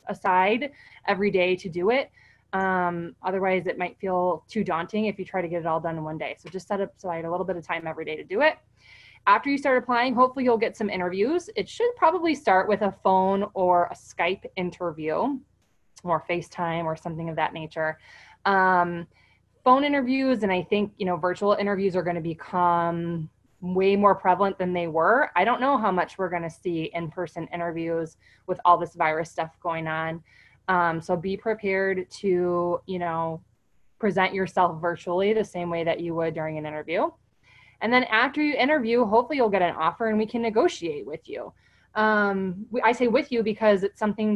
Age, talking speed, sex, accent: 20-39, 205 wpm, female, American